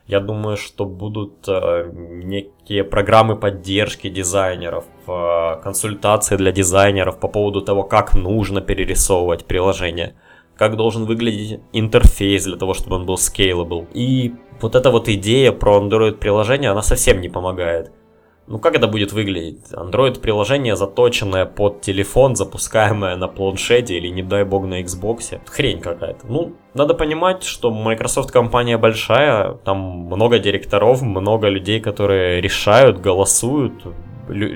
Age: 20-39